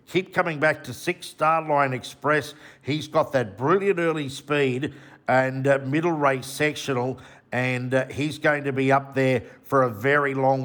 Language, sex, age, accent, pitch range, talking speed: English, male, 50-69, Australian, 125-155 Hz, 170 wpm